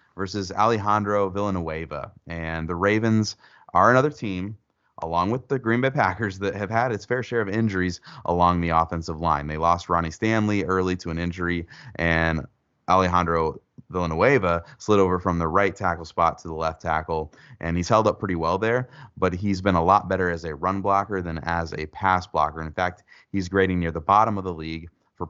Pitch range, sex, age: 85-100 Hz, male, 30-49